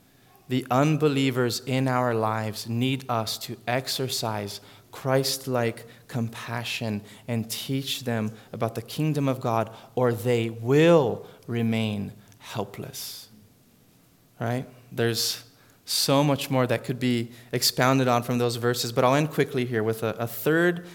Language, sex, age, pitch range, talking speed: English, male, 20-39, 115-135 Hz, 130 wpm